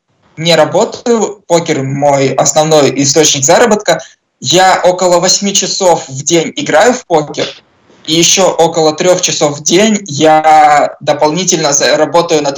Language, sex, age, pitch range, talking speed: Russian, male, 20-39, 150-180 Hz, 130 wpm